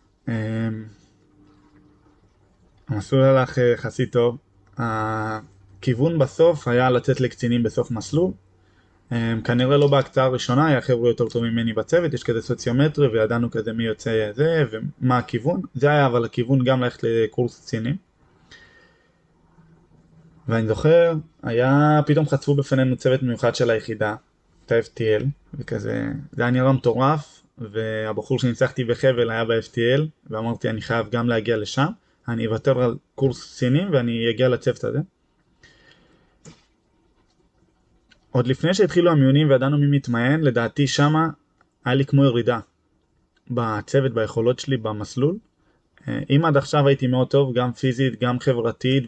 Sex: male